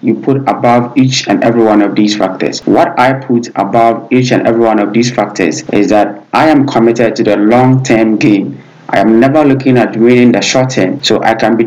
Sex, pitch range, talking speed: male, 110-130 Hz, 215 wpm